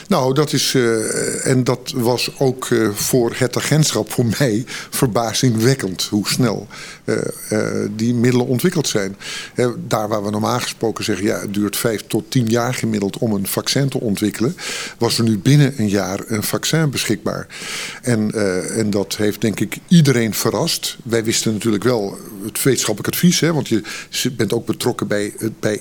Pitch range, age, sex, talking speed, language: 110-135 Hz, 50-69, male, 180 wpm, Dutch